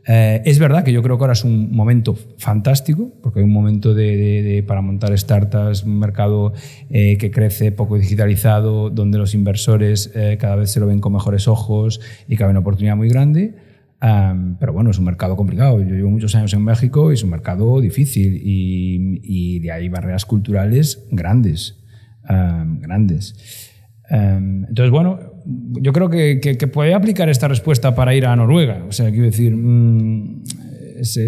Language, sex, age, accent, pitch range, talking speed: Spanish, male, 30-49, Spanish, 105-135 Hz, 185 wpm